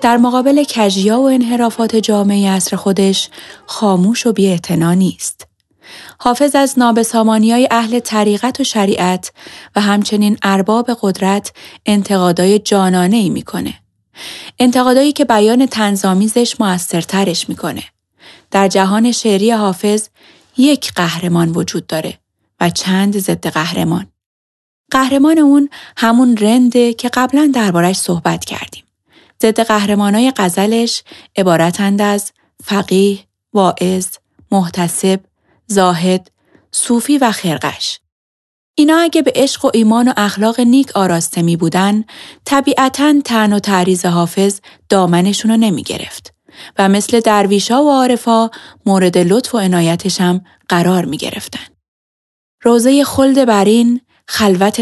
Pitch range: 185-235 Hz